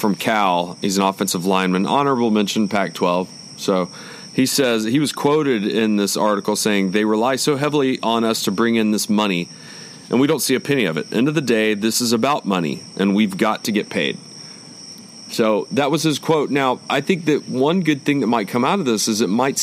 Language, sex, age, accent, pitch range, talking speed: English, male, 40-59, American, 105-135 Hz, 225 wpm